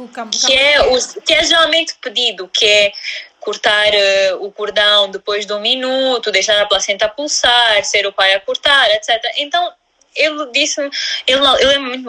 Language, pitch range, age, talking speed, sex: Portuguese, 220-305 Hz, 20-39, 170 wpm, female